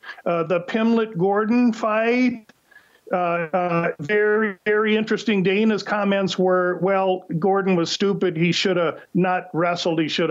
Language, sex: English, male